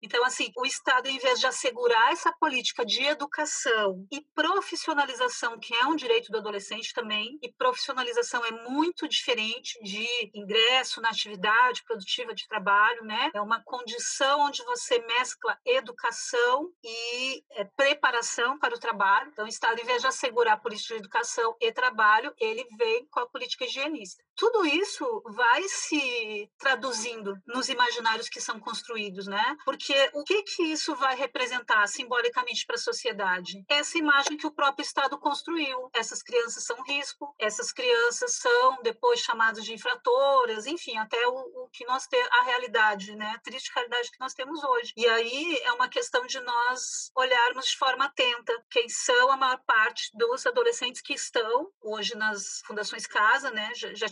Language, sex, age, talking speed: Portuguese, female, 40-59, 165 wpm